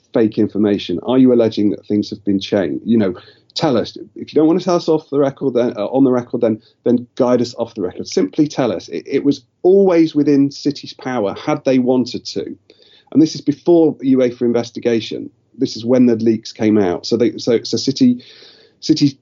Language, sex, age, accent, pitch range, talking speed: English, male, 40-59, British, 110-150 Hz, 220 wpm